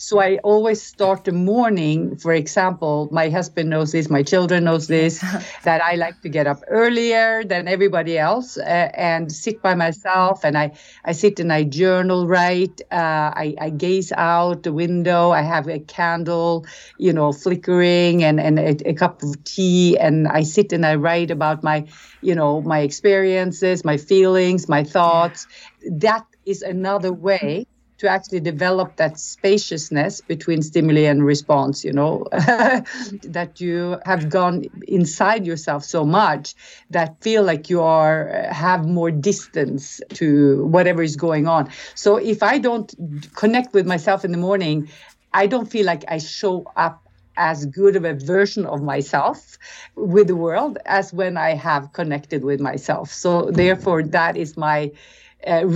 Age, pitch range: 50-69, 155-190 Hz